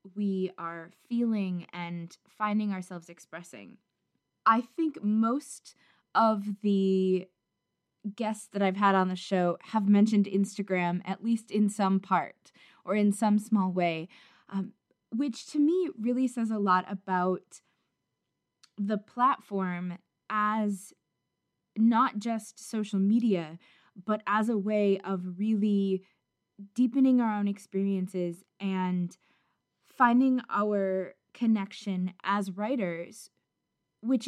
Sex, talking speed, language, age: female, 115 wpm, English, 20-39